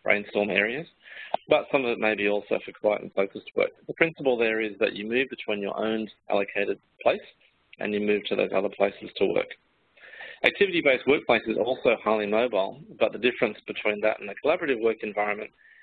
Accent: Australian